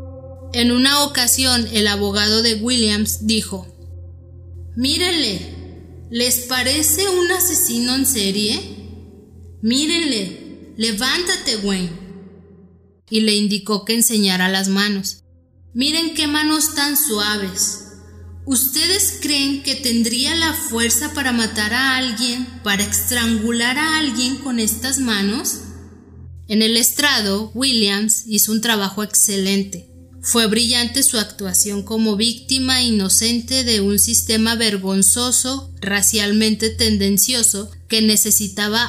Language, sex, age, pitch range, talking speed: Spanish, female, 20-39, 195-250 Hz, 110 wpm